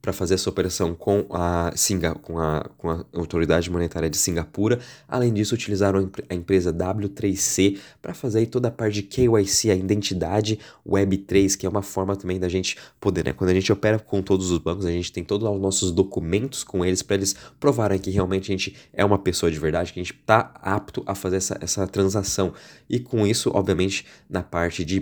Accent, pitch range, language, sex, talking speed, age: Brazilian, 90-105 Hz, Portuguese, male, 210 wpm, 20-39